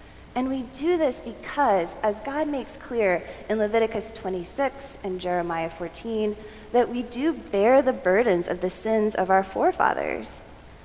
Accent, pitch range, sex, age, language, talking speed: American, 190-235 Hz, female, 20-39, English, 150 wpm